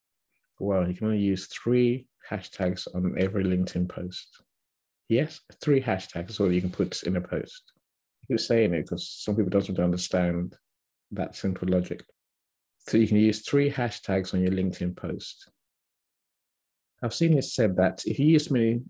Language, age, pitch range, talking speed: English, 50-69, 95-115 Hz, 175 wpm